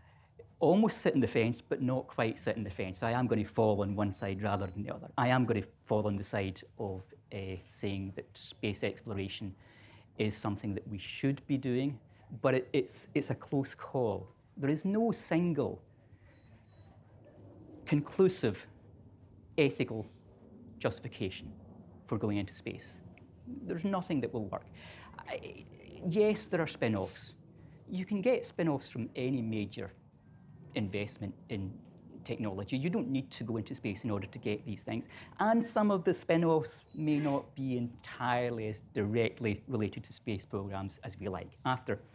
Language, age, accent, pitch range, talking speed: English, 40-59, British, 100-130 Hz, 160 wpm